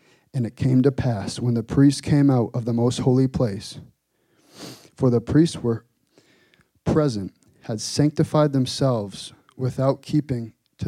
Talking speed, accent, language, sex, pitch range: 145 wpm, American, English, male, 115-140 Hz